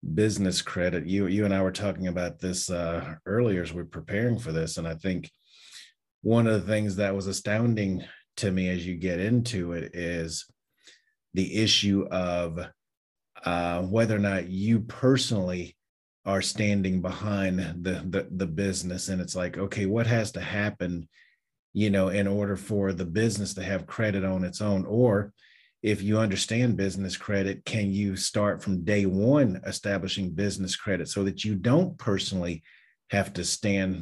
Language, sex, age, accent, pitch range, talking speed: English, male, 30-49, American, 90-105 Hz, 170 wpm